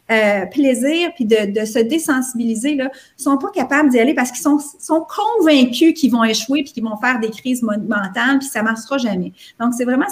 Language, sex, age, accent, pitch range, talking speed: French, female, 40-59, Canadian, 220-275 Hz, 215 wpm